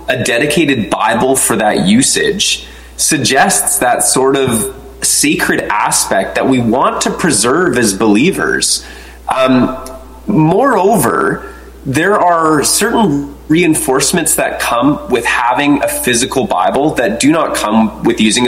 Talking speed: 125 wpm